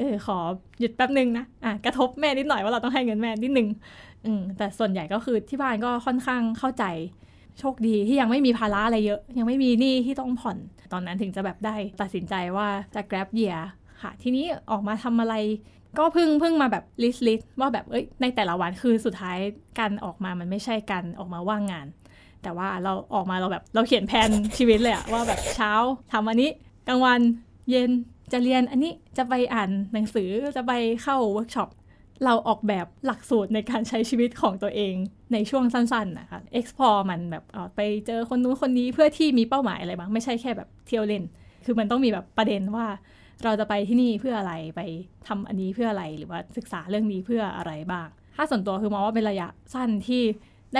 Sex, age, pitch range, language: female, 20-39, 205-245 Hz, Thai